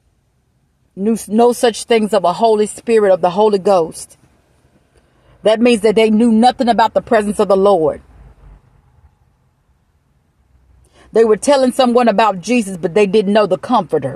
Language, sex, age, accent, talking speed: English, female, 40-59, American, 155 wpm